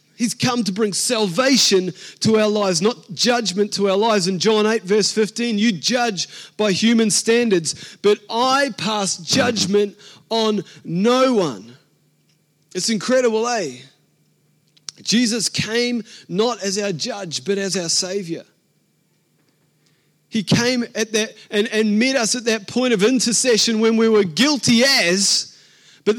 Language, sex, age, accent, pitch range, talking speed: English, male, 30-49, Australian, 185-230 Hz, 140 wpm